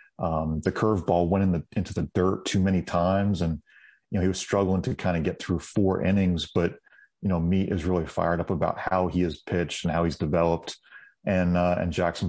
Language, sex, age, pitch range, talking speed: English, male, 30-49, 85-95 Hz, 225 wpm